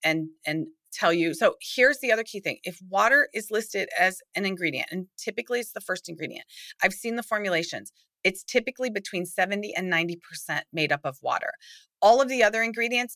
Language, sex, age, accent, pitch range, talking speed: English, female, 30-49, American, 170-235 Hz, 190 wpm